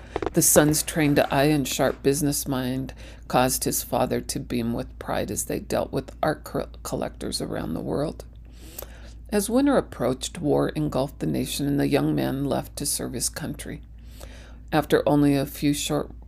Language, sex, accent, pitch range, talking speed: English, female, American, 125-150 Hz, 165 wpm